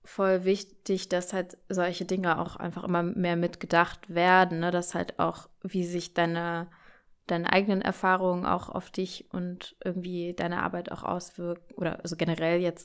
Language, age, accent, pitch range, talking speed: German, 20-39, German, 170-190 Hz, 165 wpm